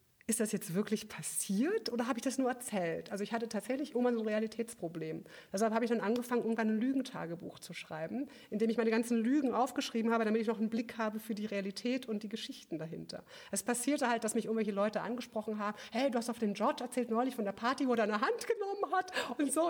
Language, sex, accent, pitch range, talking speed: German, female, German, 190-245 Hz, 240 wpm